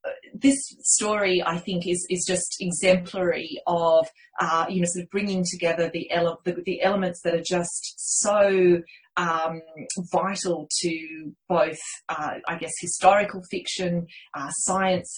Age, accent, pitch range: 30-49, Australian, 170-190 Hz